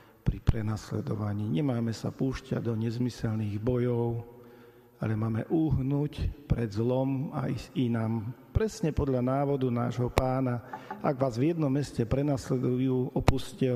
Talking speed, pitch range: 120 wpm, 120-135 Hz